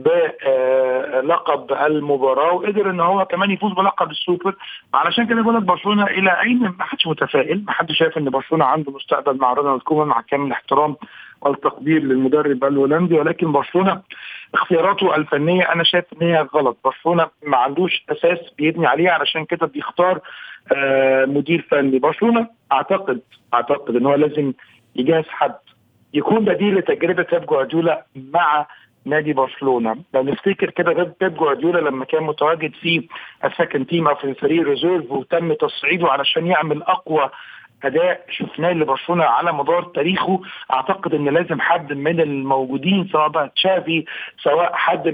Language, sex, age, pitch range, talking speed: Arabic, male, 50-69, 145-180 Hz, 140 wpm